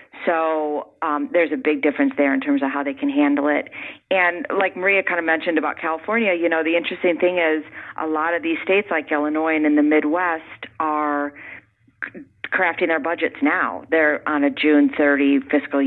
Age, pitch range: 40-59, 140-170 Hz